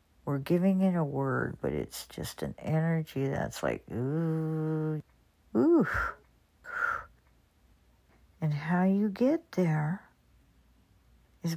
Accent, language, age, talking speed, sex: American, English, 60-79, 105 wpm, female